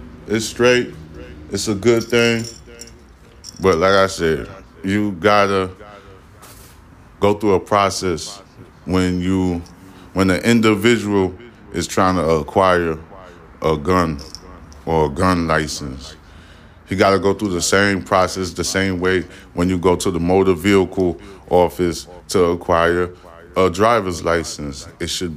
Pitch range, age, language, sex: 85-105 Hz, 20-39, English, male